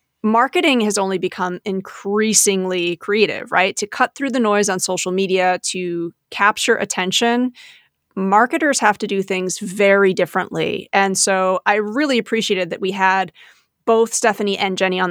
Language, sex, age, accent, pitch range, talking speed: English, female, 30-49, American, 190-220 Hz, 150 wpm